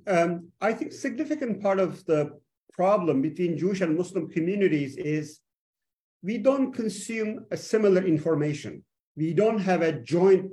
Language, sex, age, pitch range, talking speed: English, male, 50-69, 160-205 Hz, 140 wpm